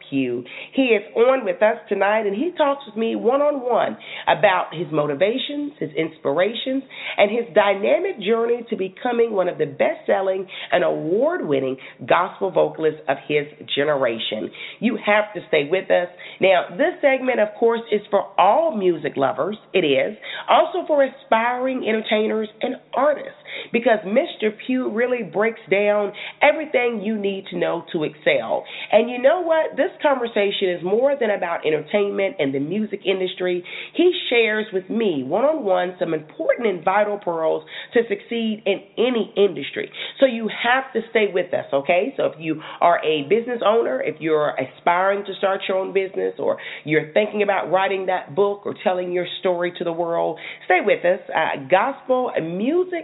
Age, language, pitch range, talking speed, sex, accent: 40-59, English, 175-235 Hz, 165 wpm, female, American